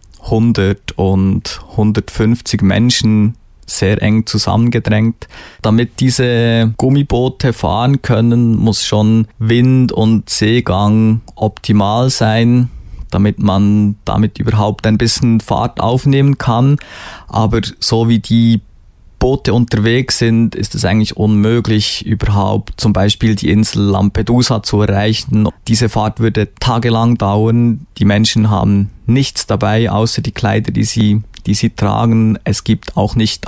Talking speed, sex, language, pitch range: 125 wpm, male, German, 105-115 Hz